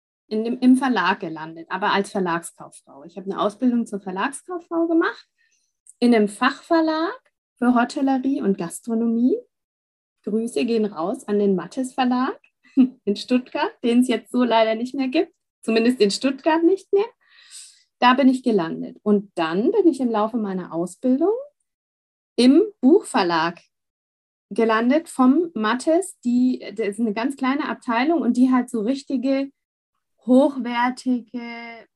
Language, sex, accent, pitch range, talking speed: German, female, German, 215-275 Hz, 140 wpm